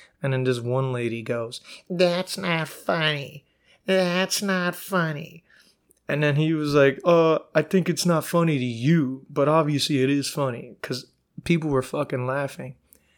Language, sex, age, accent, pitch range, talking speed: English, male, 30-49, American, 130-165 Hz, 160 wpm